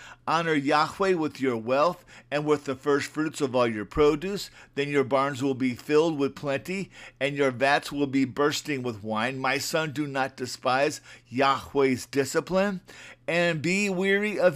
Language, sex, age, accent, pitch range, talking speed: English, male, 50-69, American, 140-180 Hz, 170 wpm